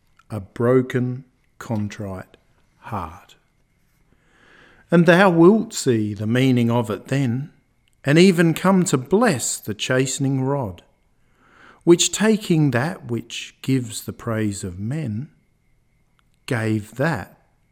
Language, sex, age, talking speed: English, male, 50-69, 110 wpm